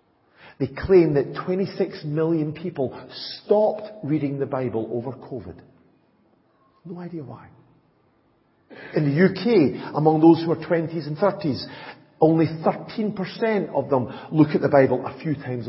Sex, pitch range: male, 135-195 Hz